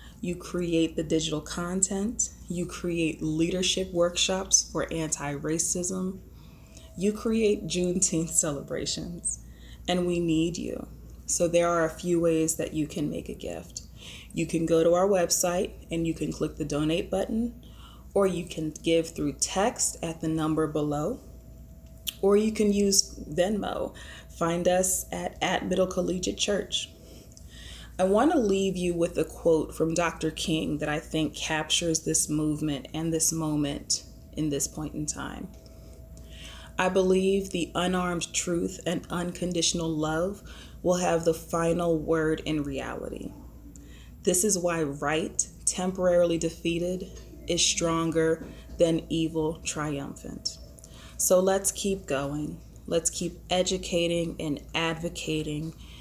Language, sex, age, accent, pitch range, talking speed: English, female, 20-39, American, 155-180 Hz, 135 wpm